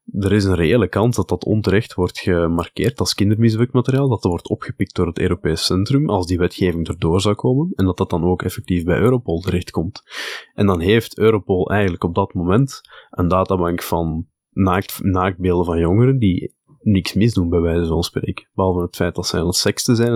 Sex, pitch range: male, 90-105 Hz